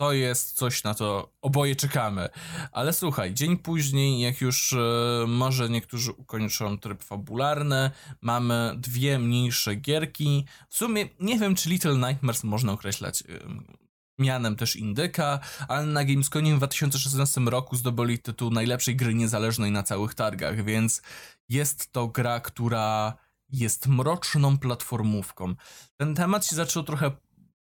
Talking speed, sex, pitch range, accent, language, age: 130 wpm, male, 115-145 Hz, native, Polish, 20-39